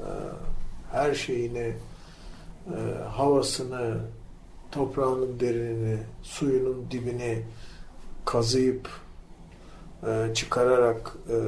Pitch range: 110-135 Hz